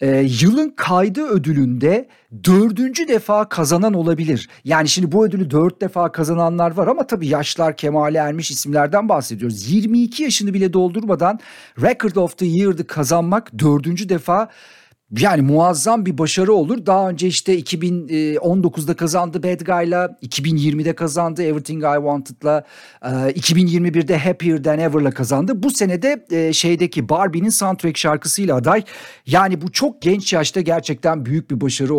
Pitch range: 150-205 Hz